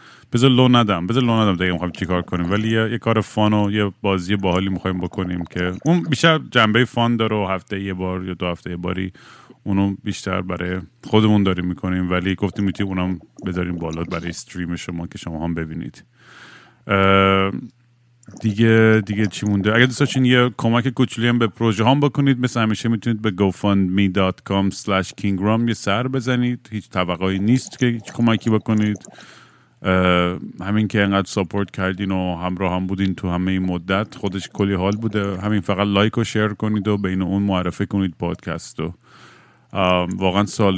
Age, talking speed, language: 30-49, 165 wpm, Persian